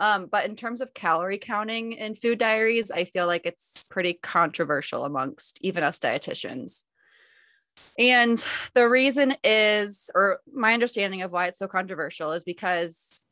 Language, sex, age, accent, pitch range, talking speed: English, female, 20-39, American, 175-225 Hz, 155 wpm